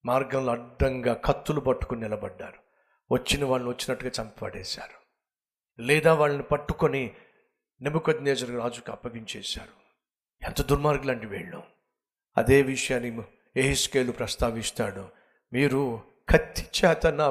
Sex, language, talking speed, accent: male, Telugu, 90 wpm, native